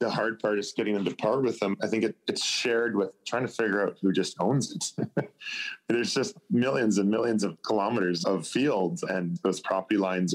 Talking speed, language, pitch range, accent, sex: 205 wpm, English, 85-105 Hz, American, male